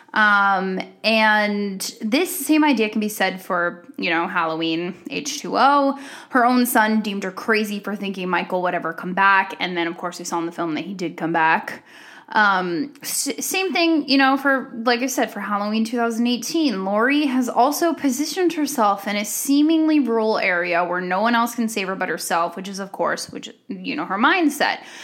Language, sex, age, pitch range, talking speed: English, female, 10-29, 190-270 Hz, 190 wpm